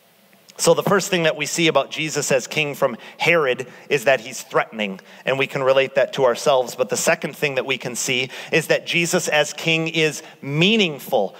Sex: male